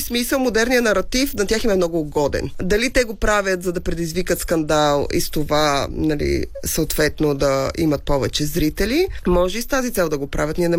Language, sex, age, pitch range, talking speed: Bulgarian, female, 20-39, 165-215 Hz, 195 wpm